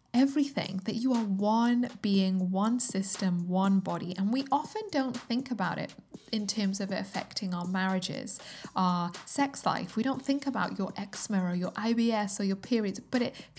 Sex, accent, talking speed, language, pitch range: female, British, 180 wpm, English, 190-235 Hz